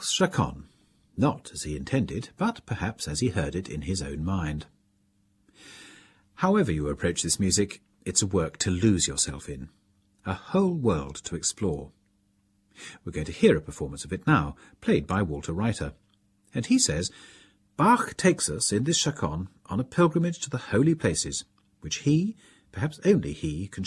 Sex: male